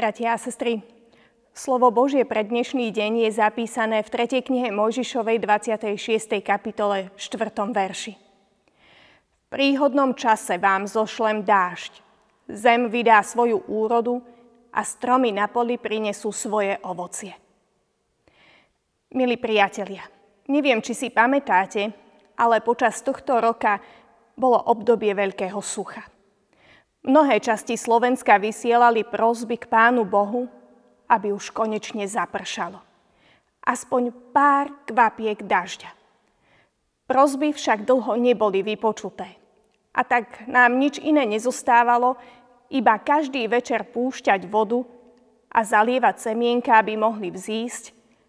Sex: female